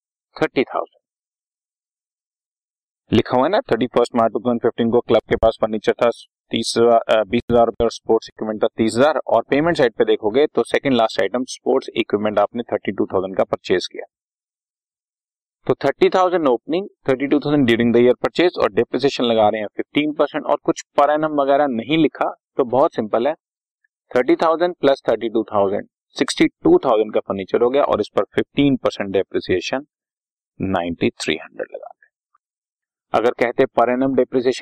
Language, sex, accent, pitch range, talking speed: Hindi, male, native, 115-145 Hz, 125 wpm